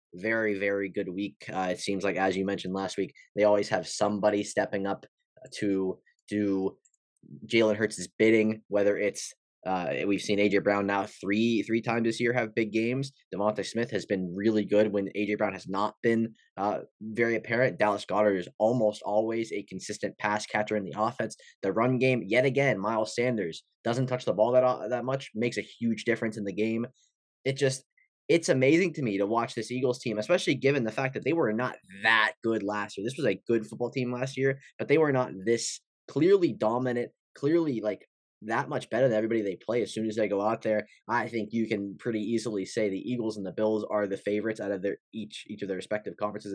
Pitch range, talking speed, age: 100-120 Hz, 215 wpm, 20-39